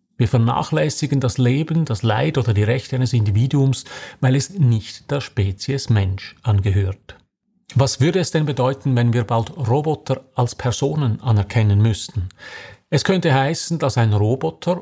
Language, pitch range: German, 110-135 Hz